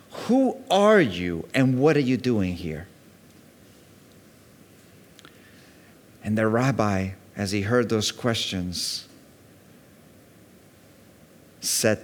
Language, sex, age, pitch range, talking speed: English, male, 50-69, 95-135 Hz, 90 wpm